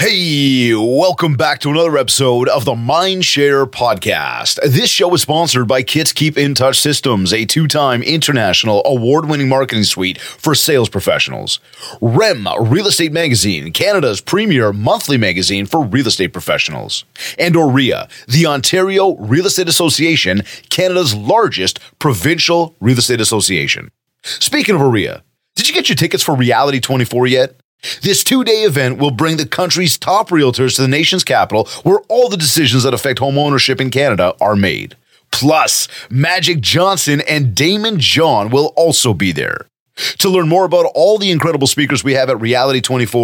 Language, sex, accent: English, male, American